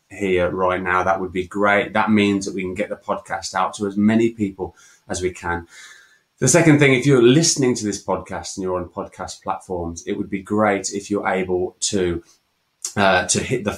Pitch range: 90-110 Hz